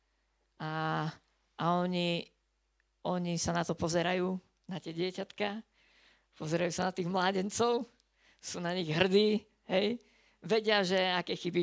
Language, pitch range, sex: Slovak, 165-190 Hz, female